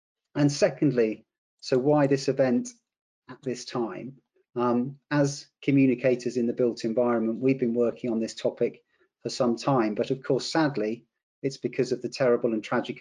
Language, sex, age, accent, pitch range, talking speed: English, male, 40-59, British, 115-130 Hz, 165 wpm